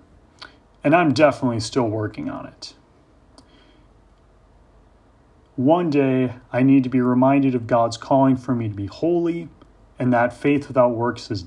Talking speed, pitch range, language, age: 145 wpm, 120-150 Hz, English, 30-49